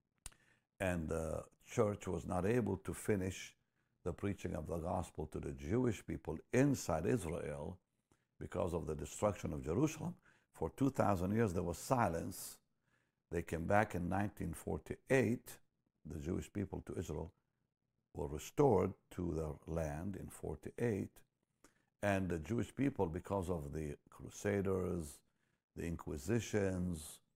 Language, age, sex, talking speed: English, 60-79, male, 125 wpm